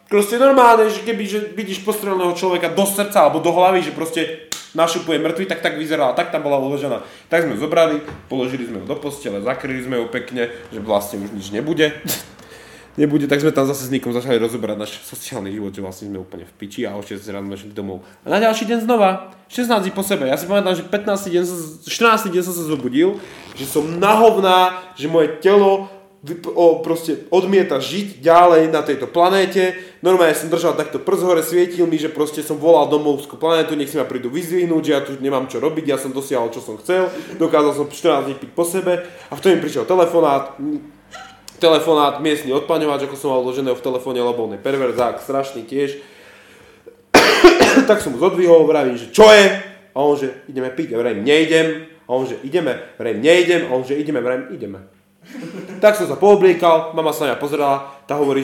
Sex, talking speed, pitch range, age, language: male, 200 wpm, 135-185 Hz, 20-39, Slovak